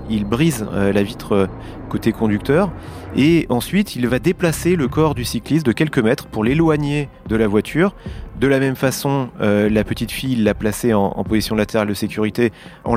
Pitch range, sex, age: 105-130 Hz, male, 30-49